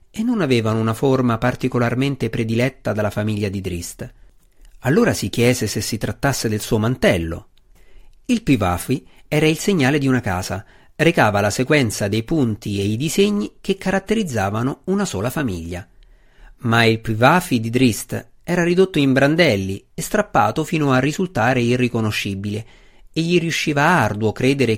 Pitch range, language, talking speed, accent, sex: 105-140 Hz, Italian, 150 wpm, native, male